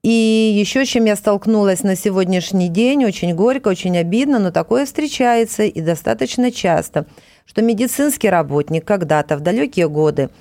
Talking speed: 145 wpm